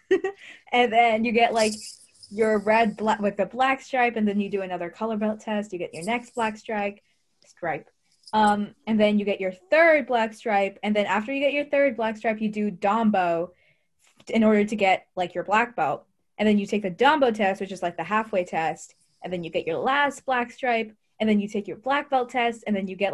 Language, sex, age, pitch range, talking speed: English, female, 20-39, 195-245 Hz, 235 wpm